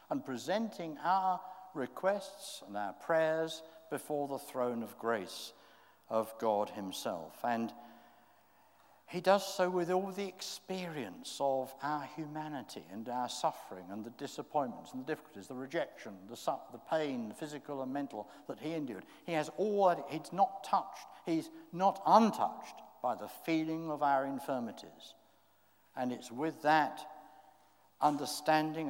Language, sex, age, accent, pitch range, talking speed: English, male, 60-79, British, 125-180 Hz, 145 wpm